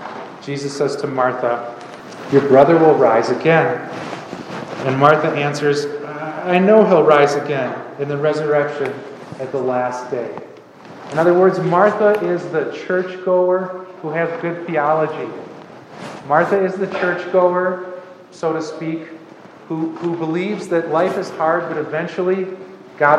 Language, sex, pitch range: English, male, 145-175 Hz